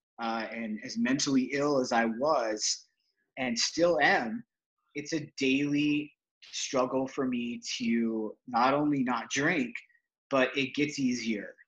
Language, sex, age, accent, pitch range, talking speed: English, male, 30-49, American, 120-150 Hz, 135 wpm